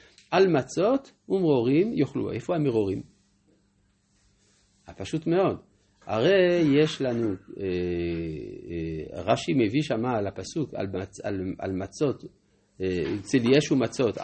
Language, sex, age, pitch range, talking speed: Hebrew, male, 50-69, 110-170 Hz, 100 wpm